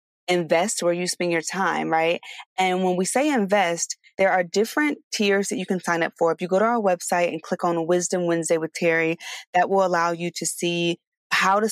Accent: American